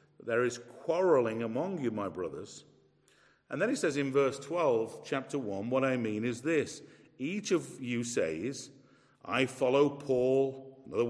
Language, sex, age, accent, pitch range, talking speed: English, male, 50-69, British, 120-140 Hz, 155 wpm